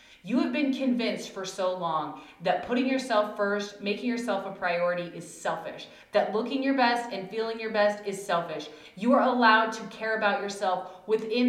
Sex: female